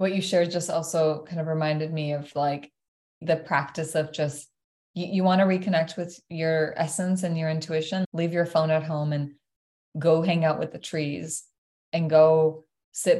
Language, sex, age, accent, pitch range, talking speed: English, female, 20-39, American, 155-180 Hz, 180 wpm